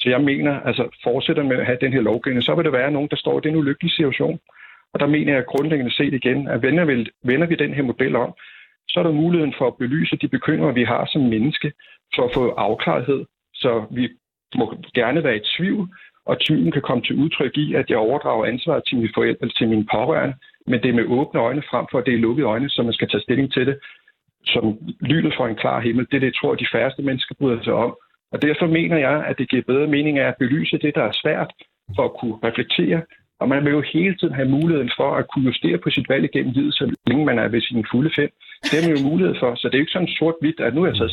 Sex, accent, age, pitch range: male, native, 60-79, 125-160 Hz